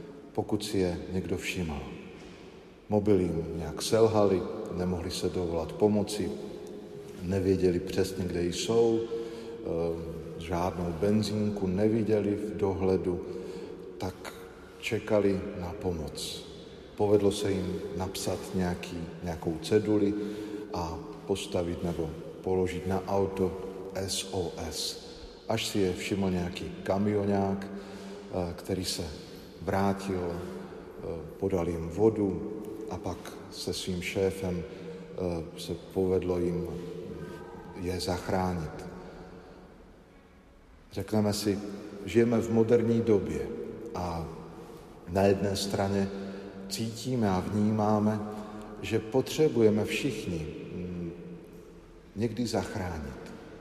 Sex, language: male, Slovak